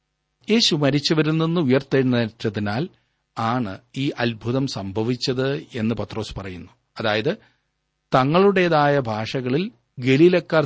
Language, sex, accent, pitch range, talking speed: Malayalam, male, native, 115-155 Hz, 85 wpm